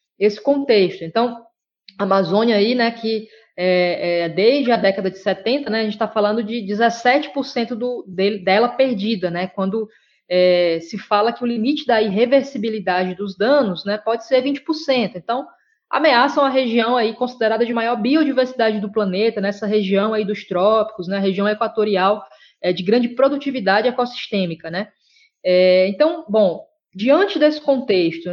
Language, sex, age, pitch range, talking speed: Portuguese, female, 20-39, 195-245 Hz, 155 wpm